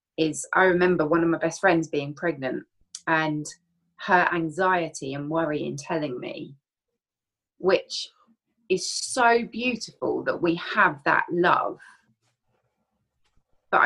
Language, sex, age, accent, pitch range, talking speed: English, female, 30-49, British, 160-210 Hz, 120 wpm